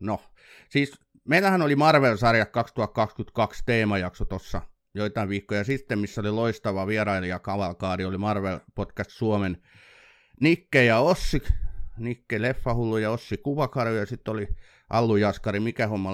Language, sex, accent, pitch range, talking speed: Finnish, male, native, 105-135 Hz, 130 wpm